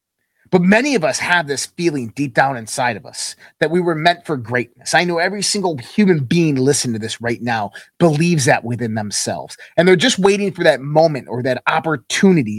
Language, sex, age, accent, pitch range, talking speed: English, male, 30-49, American, 125-180 Hz, 205 wpm